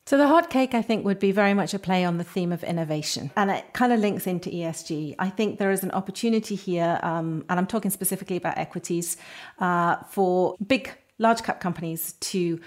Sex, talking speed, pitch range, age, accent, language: female, 215 wpm, 170-200 Hz, 40-59, British, English